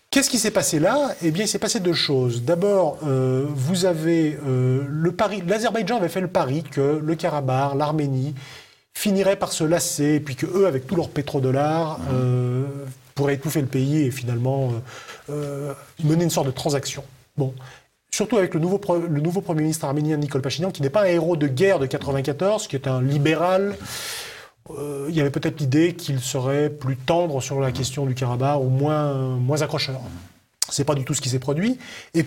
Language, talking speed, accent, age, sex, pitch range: French, 200 wpm, French, 30-49, male, 135-170 Hz